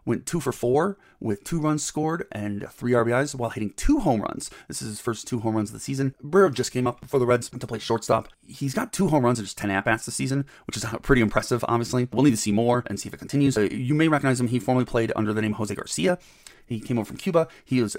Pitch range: 110-135 Hz